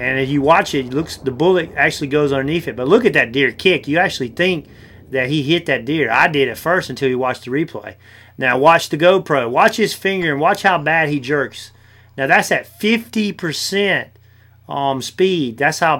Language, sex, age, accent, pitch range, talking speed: English, male, 30-49, American, 125-160 Hz, 210 wpm